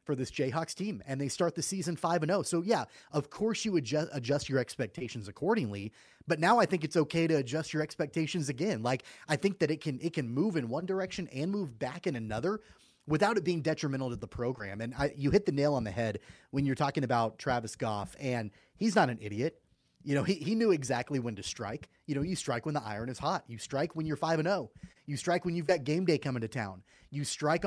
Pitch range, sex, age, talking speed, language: 125-165 Hz, male, 30-49, 245 wpm, English